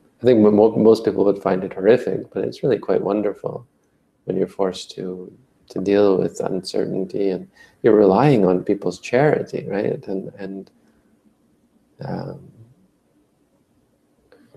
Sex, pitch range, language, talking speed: male, 90-100 Hz, English, 130 wpm